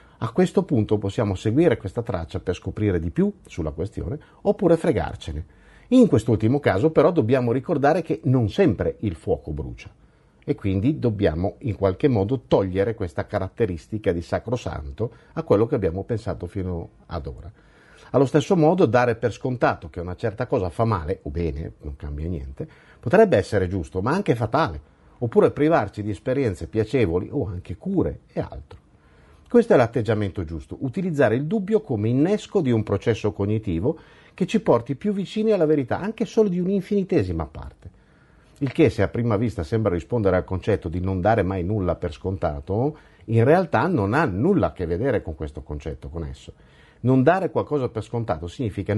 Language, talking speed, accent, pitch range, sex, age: Italian, 170 wpm, native, 95-140 Hz, male, 50-69